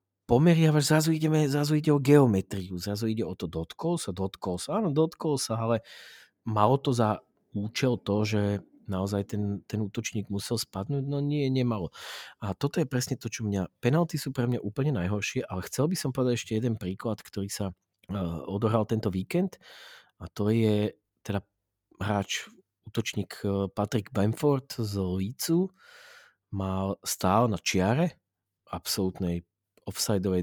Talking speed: 150 wpm